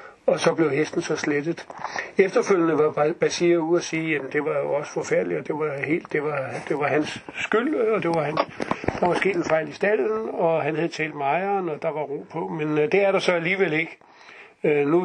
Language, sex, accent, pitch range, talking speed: Danish, male, native, 150-180 Hz, 225 wpm